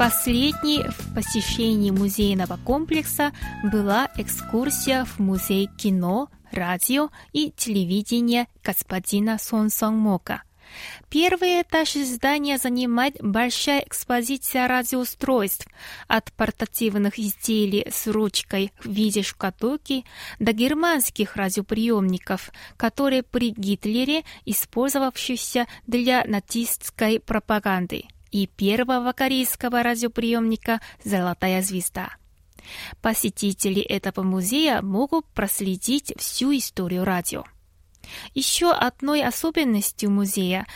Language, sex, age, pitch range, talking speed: Russian, female, 20-39, 200-265 Hz, 85 wpm